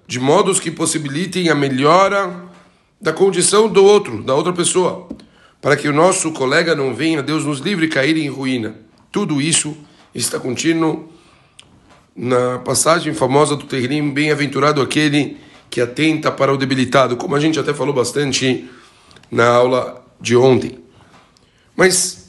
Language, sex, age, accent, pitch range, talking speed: Portuguese, male, 60-79, Brazilian, 135-175 Hz, 145 wpm